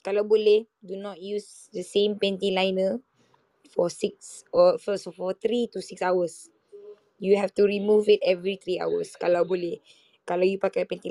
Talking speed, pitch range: 155 wpm, 190-225 Hz